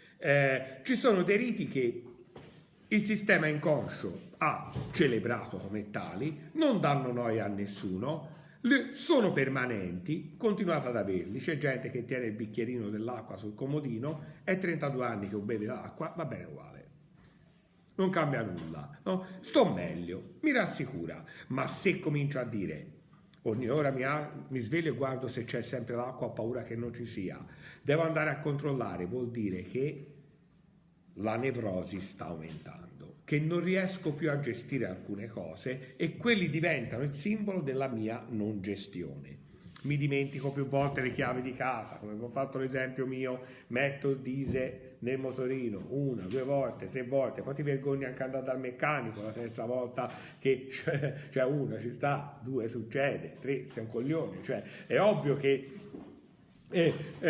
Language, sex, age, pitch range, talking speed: Italian, male, 50-69, 120-165 Hz, 155 wpm